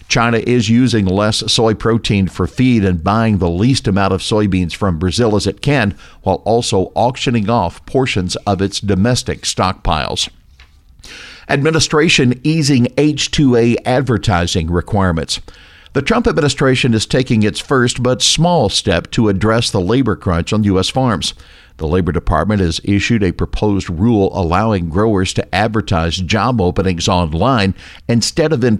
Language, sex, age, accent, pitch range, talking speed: English, male, 60-79, American, 95-120 Hz, 145 wpm